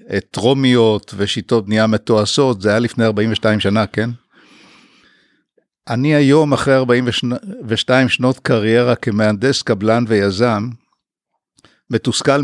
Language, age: Hebrew, 60-79